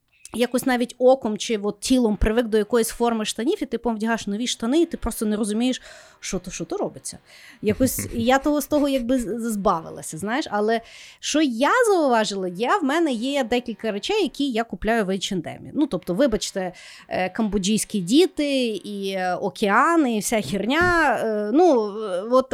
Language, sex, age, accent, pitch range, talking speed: Ukrainian, female, 30-49, native, 210-290 Hz, 165 wpm